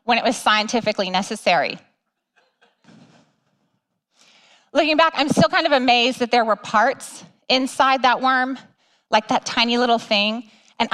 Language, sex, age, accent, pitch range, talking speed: English, female, 30-49, American, 200-260 Hz, 135 wpm